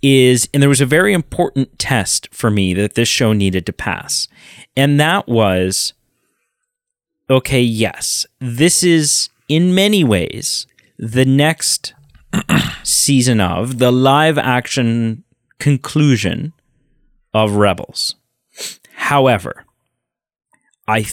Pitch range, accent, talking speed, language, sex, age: 105-145 Hz, American, 110 wpm, English, male, 30-49